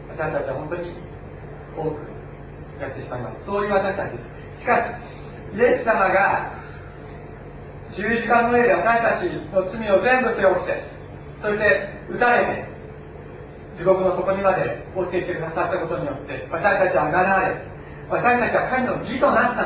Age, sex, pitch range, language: 40-59, male, 160-200 Hz, Japanese